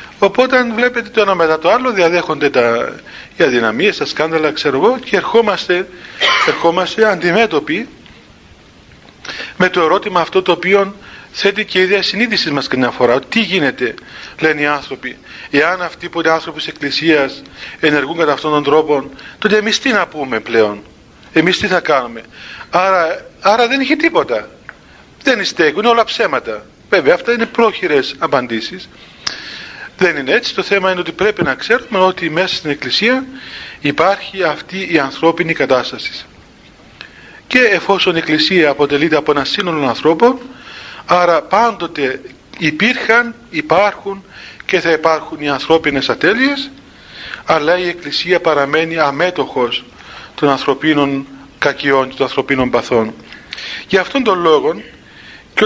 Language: Greek